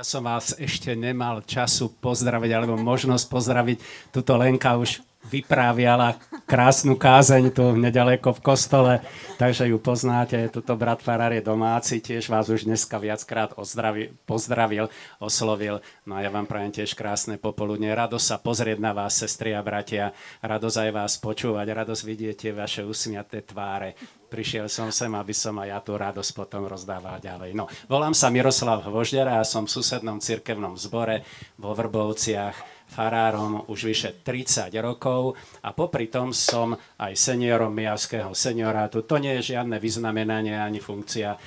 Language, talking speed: Slovak, 155 wpm